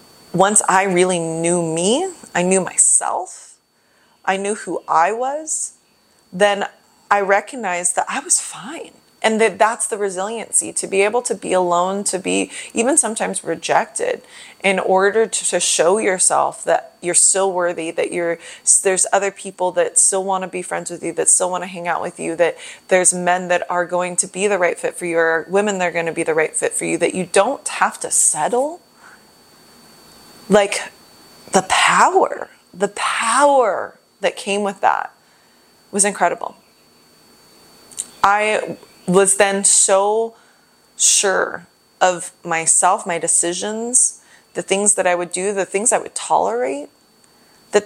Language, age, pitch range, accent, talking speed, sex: English, 30-49, 175-215 Hz, American, 160 wpm, female